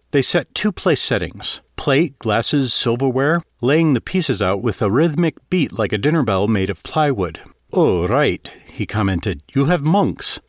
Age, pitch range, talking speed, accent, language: 50-69, 100-150 Hz, 160 wpm, American, English